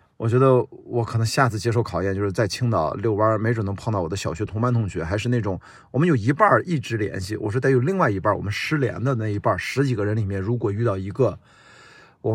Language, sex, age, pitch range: Chinese, male, 30-49, 105-135 Hz